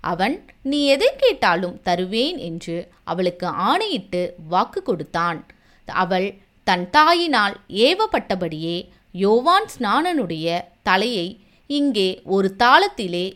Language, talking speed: Tamil, 90 wpm